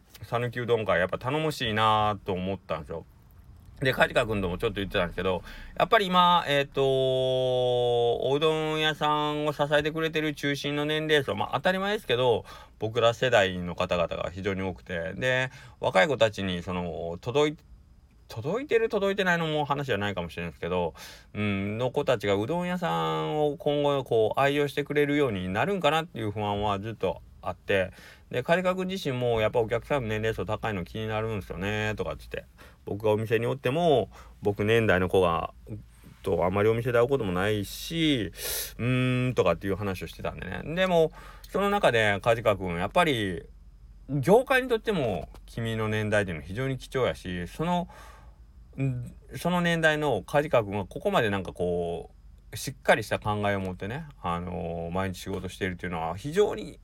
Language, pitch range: Japanese, 95-150 Hz